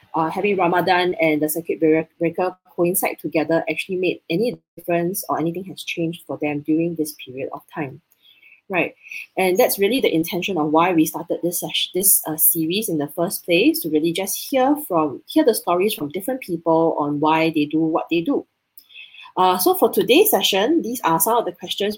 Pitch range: 160-200 Hz